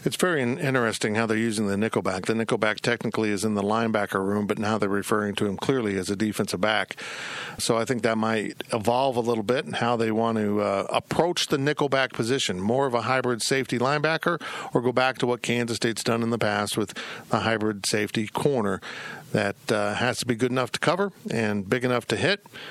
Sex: male